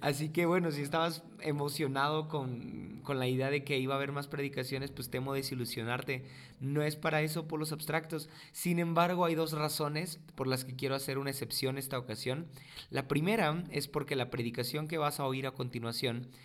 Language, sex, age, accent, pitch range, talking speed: Spanish, male, 30-49, Mexican, 125-155 Hz, 195 wpm